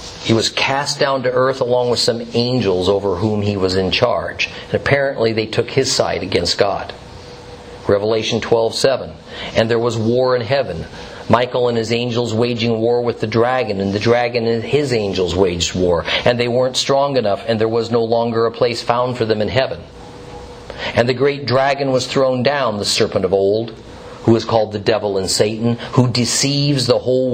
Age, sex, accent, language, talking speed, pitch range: 50-69, male, American, English, 195 wpm, 105-125 Hz